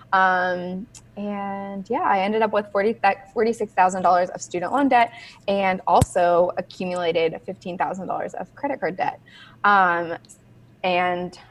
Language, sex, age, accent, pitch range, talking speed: English, female, 20-39, American, 175-190 Hz, 120 wpm